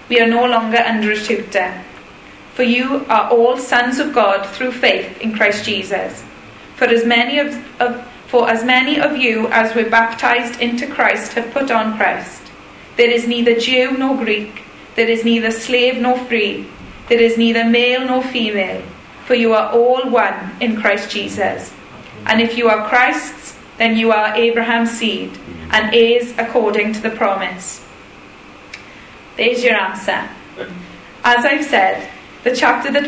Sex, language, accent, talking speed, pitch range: female, English, British, 160 wpm, 220-245 Hz